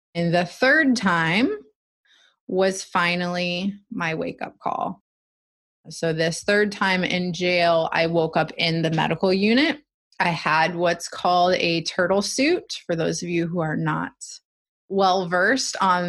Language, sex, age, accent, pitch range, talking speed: English, female, 20-39, American, 160-200 Hz, 140 wpm